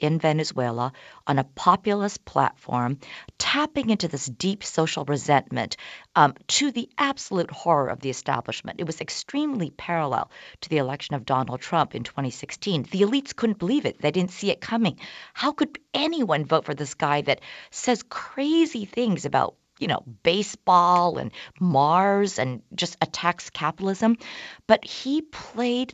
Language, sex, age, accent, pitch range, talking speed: English, female, 50-69, American, 145-220 Hz, 155 wpm